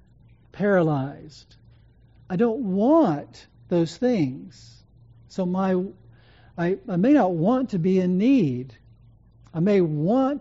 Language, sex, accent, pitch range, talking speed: English, male, American, 125-210 Hz, 115 wpm